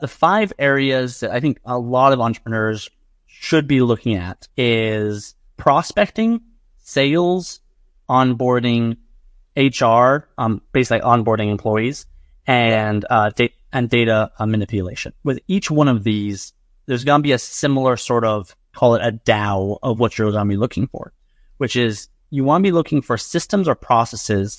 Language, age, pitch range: English, 30-49, 110-135 Hz